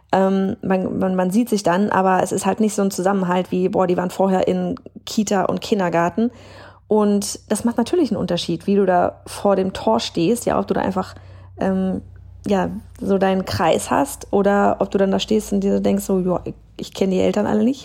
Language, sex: German, female